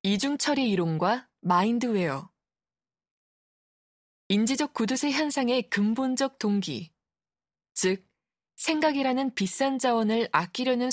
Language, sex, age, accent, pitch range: Korean, female, 20-39, native, 185-260 Hz